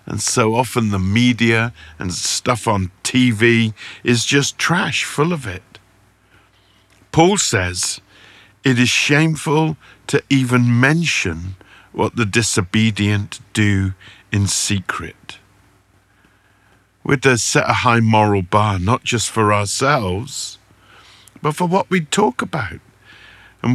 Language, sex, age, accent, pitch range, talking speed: English, male, 50-69, British, 100-125 Hz, 120 wpm